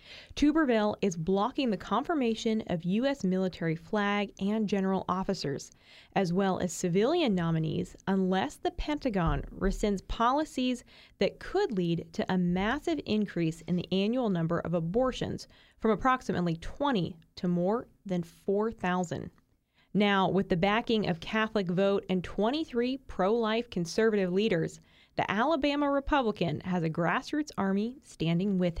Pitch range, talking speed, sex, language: 180-230 Hz, 130 wpm, female, English